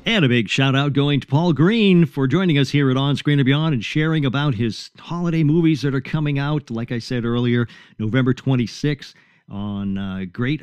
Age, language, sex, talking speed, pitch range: 50-69, English, male, 210 wpm, 110-160 Hz